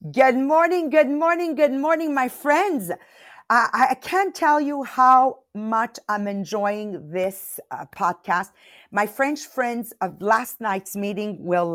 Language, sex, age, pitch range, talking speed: English, female, 50-69, 180-260 Hz, 145 wpm